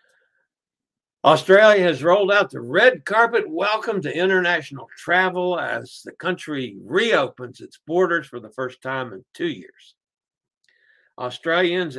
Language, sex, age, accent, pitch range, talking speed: English, male, 60-79, American, 130-180 Hz, 125 wpm